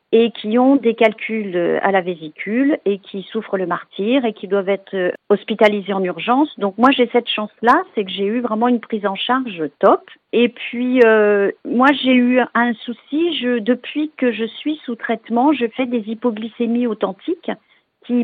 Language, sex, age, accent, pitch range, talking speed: French, female, 40-59, French, 200-245 Hz, 185 wpm